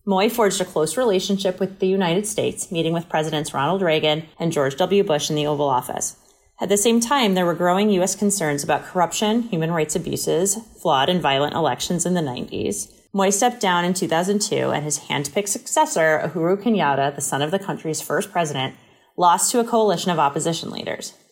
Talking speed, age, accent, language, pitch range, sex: 190 wpm, 30-49, American, English, 150-195 Hz, female